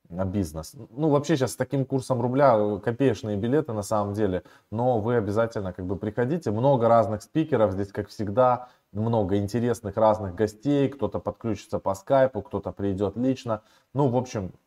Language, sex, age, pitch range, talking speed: Russian, male, 20-39, 100-130 Hz, 160 wpm